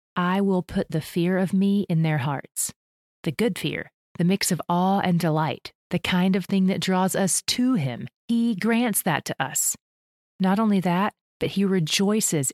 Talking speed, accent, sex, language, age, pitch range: 185 wpm, American, female, English, 30-49, 155-195 Hz